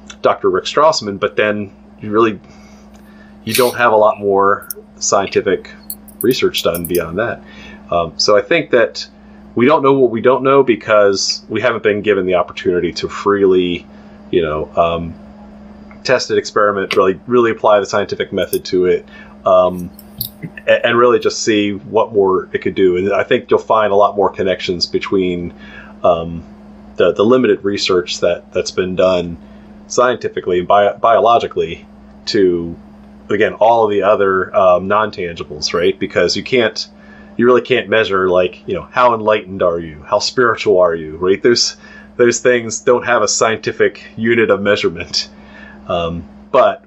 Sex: male